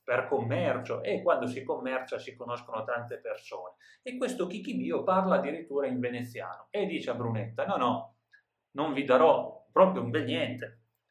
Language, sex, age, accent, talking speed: Italian, male, 30-49, native, 160 wpm